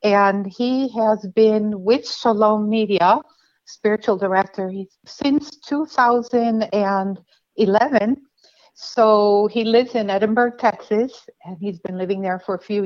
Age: 60-79